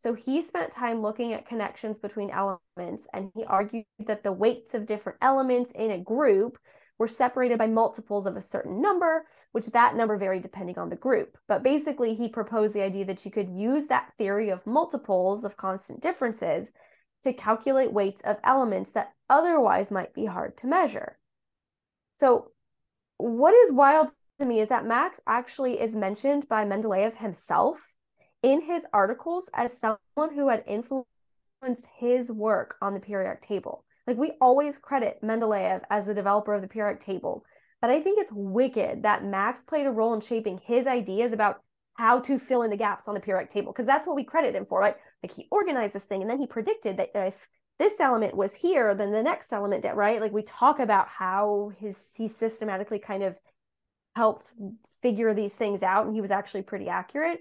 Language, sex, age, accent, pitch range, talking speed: English, female, 10-29, American, 205-255 Hz, 190 wpm